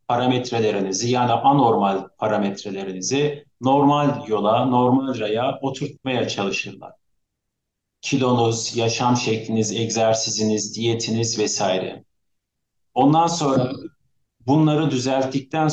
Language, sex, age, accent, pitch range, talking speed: Turkish, male, 50-69, native, 110-145 Hz, 75 wpm